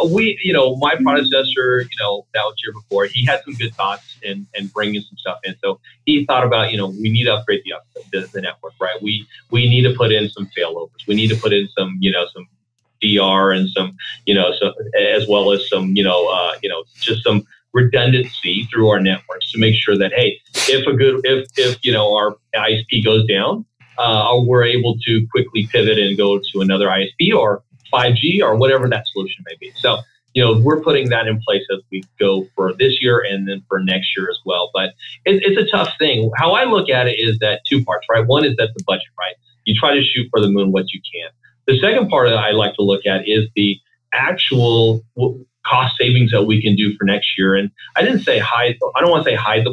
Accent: American